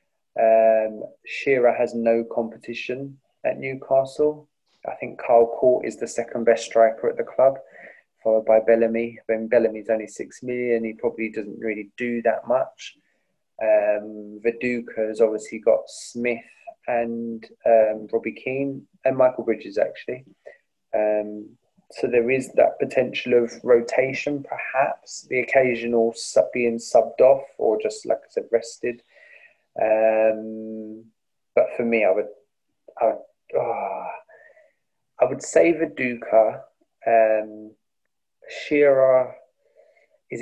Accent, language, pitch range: British, English, 110-135 Hz